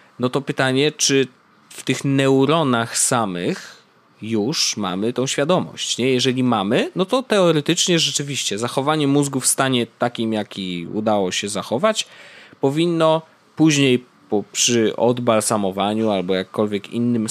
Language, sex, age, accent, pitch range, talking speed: Polish, male, 20-39, native, 110-150 Hz, 120 wpm